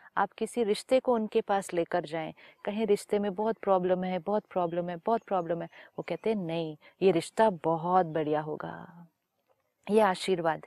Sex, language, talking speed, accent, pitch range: female, Hindi, 175 wpm, native, 180-235 Hz